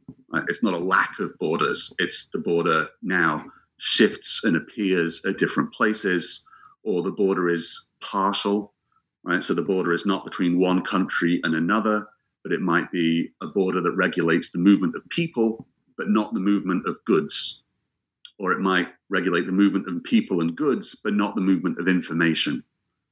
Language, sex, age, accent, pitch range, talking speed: English, male, 40-59, British, 85-110 Hz, 170 wpm